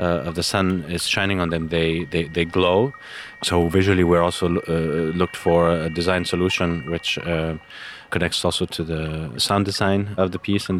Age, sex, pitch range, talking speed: 30-49, male, 85-95 Hz, 190 wpm